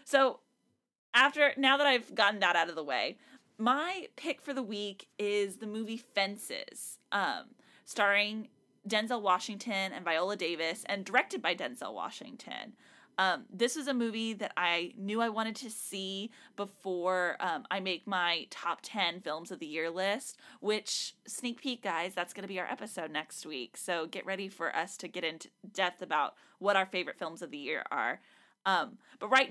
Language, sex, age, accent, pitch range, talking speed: English, female, 20-39, American, 185-245 Hz, 180 wpm